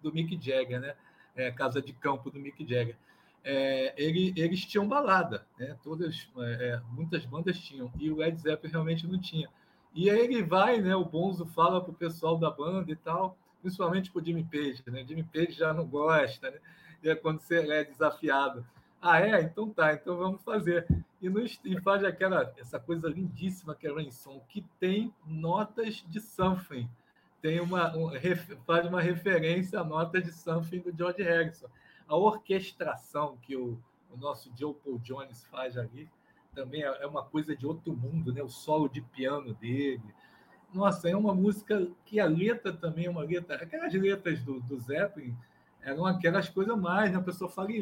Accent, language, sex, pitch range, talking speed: Brazilian, Portuguese, male, 145-185 Hz, 180 wpm